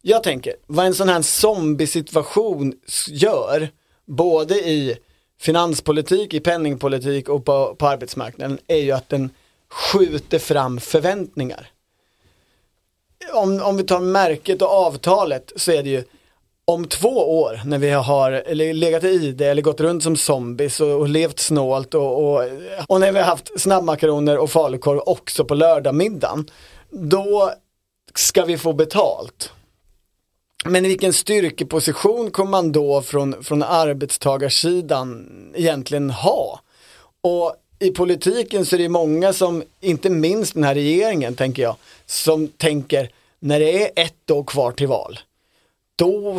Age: 30-49